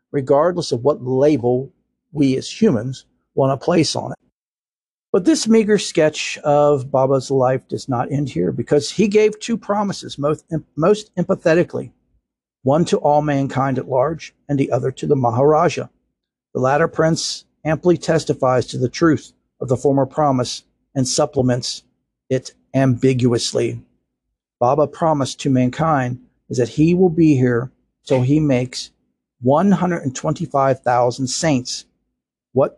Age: 50-69